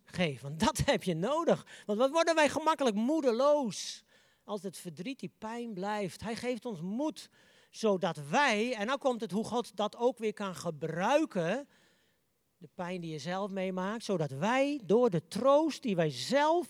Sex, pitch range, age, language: male, 185-245 Hz, 40-59, Dutch